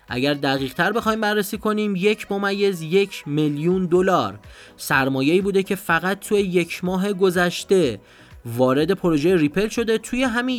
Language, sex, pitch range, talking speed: Persian, male, 135-195 Hz, 145 wpm